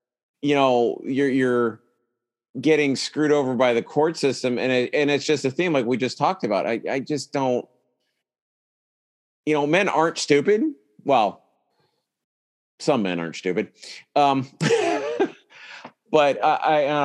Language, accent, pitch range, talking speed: English, American, 120-145 Hz, 140 wpm